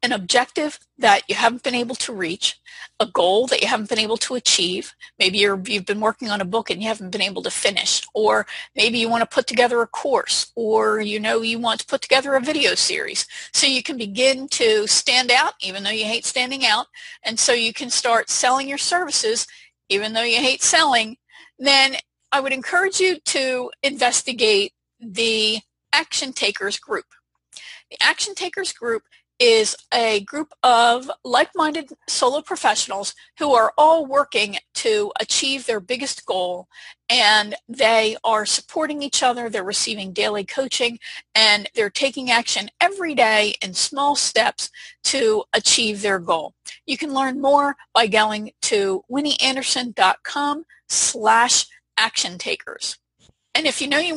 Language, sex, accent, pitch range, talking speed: English, female, American, 220-300 Hz, 165 wpm